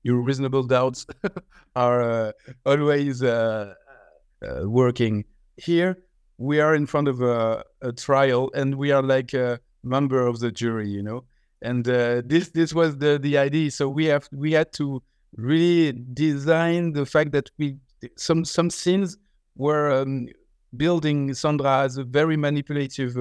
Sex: male